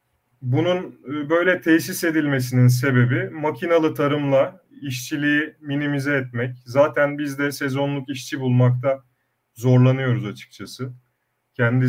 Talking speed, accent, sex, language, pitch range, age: 95 wpm, native, male, Turkish, 120-150 Hz, 30-49